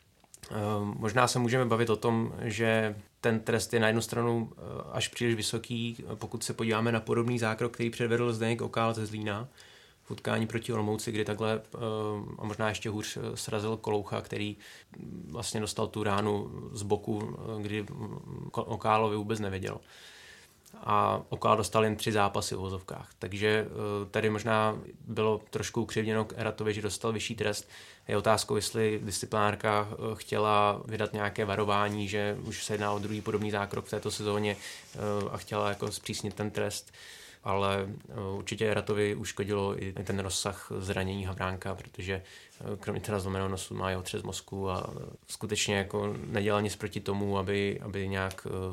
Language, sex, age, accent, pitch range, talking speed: Czech, male, 20-39, native, 100-110 Hz, 150 wpm